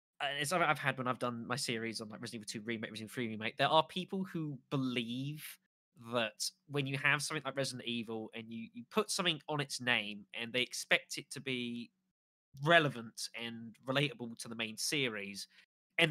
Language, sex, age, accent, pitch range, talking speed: English, male, 20-39, British, 115-150 Hz, 195 wpm